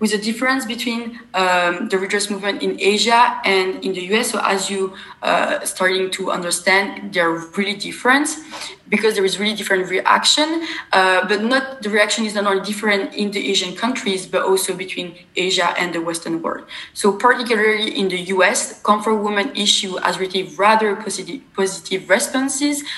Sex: female